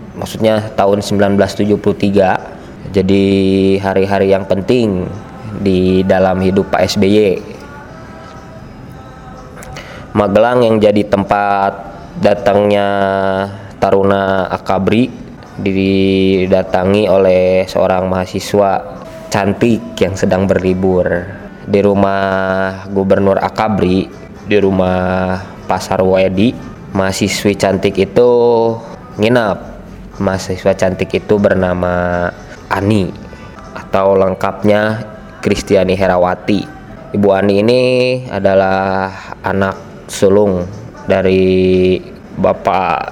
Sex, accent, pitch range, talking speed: male, native, 95-105 Hz, 80 wpm